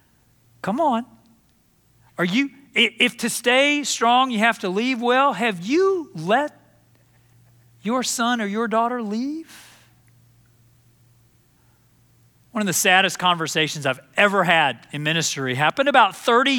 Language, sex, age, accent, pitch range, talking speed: English, male, 40-59, American, 155-255 Hz, 125 wpm